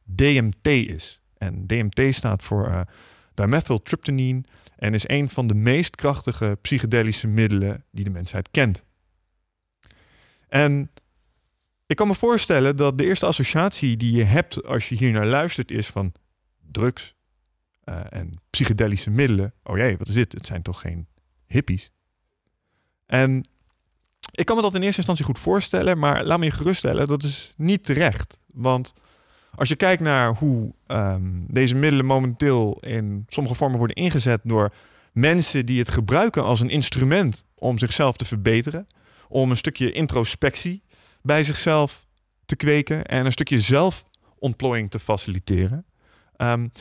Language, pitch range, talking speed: Dutch, 100-140 Hz, 150 wpm